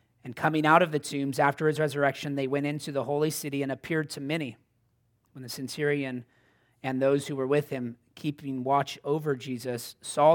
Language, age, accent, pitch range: English, 30-49, American, 120-145 Hz